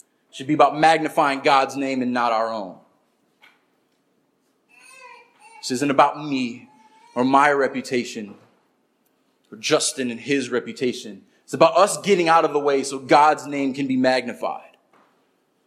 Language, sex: English, male